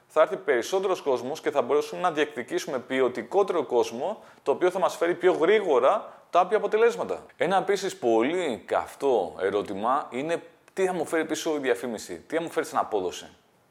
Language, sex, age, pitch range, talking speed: Greek, male, 30-49, 125-190 Hz, 175 wpm